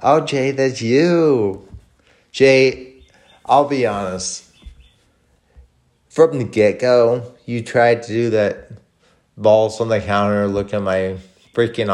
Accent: American